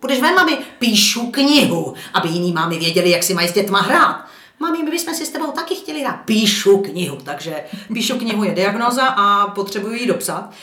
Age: 40-59